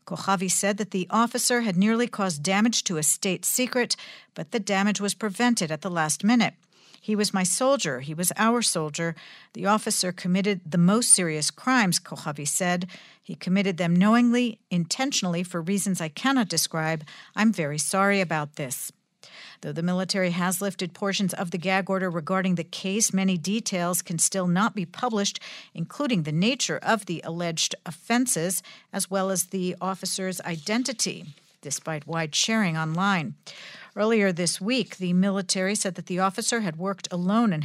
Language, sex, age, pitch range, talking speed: English, female, 50-69, 170-210 Hz, 165 wpm